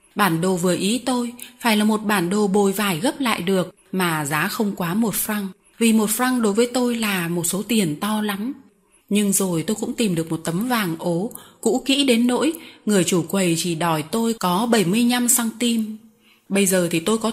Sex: female